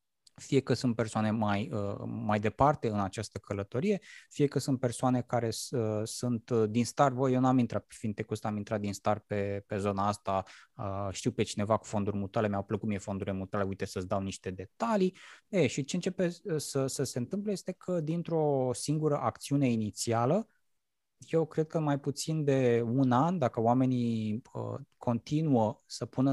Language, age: Romanian, 20-39